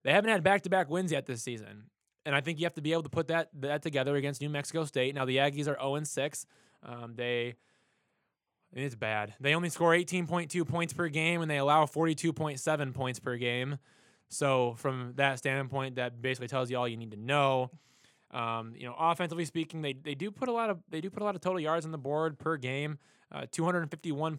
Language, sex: English, male